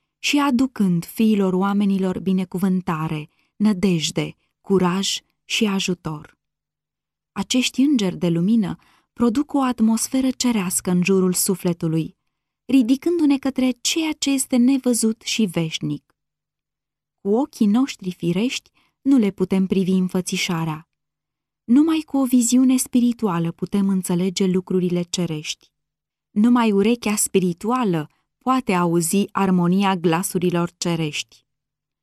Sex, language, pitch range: female, Romanian, 180-240 Hz